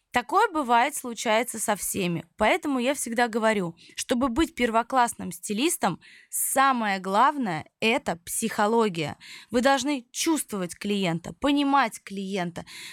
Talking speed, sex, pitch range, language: 105 wpm, female, 200-280 Hz, Russian